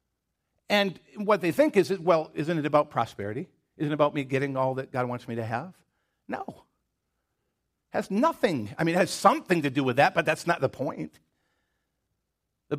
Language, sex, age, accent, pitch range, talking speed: English, male, 50-69, American, 105-160 Hz, 190 wpm